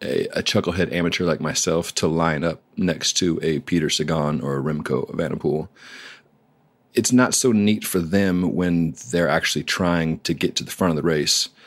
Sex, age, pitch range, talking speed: male, 30-49, 75-85 Hz, 190 wpm